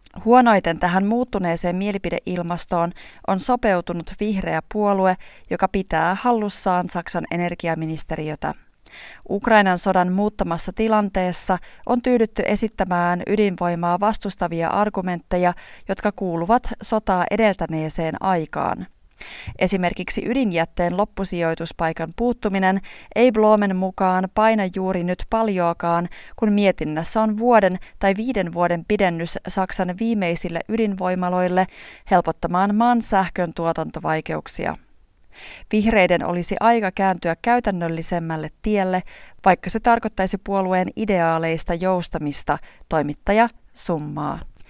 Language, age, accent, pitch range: Finnish, 30-49, native, 175-210 Hz